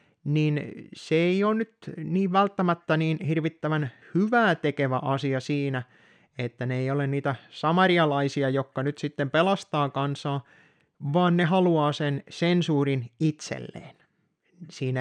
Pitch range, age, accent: 135-175 Hz, 30-49, native